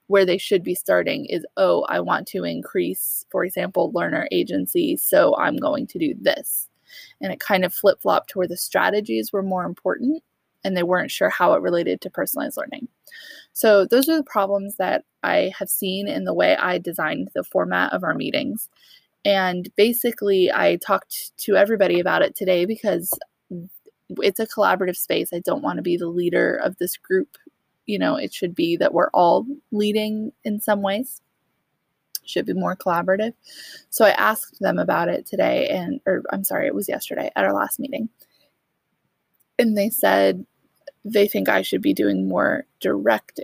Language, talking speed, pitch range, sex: English, 180 wpm, 185-240 Hz, female